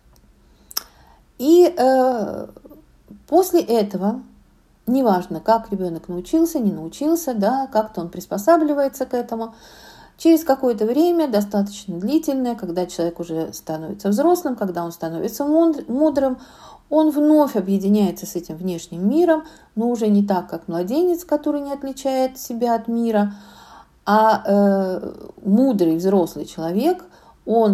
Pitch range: 195-265 Hz